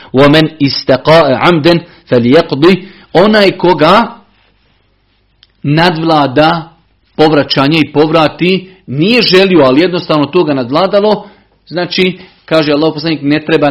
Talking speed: 100 wpm